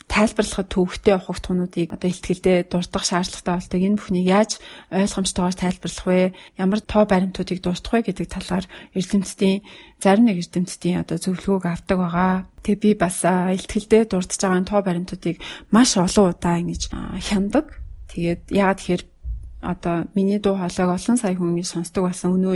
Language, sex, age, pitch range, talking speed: English, female, 30-49, 180-205 Hz, 140 wpm